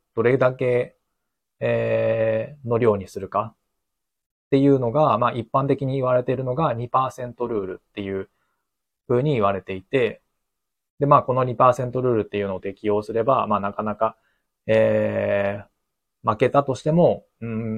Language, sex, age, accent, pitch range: Japanese, male, 20-39, native, 105-125 Hz